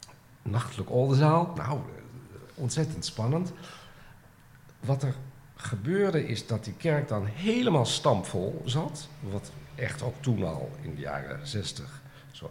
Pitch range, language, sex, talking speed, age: 100-140 Hz, Dutch, male, 125 wpm, 50-69